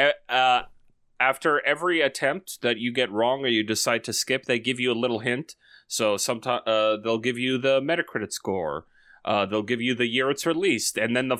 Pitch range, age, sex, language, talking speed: 105-130 Hz, 30-49, male, English, 200 wpm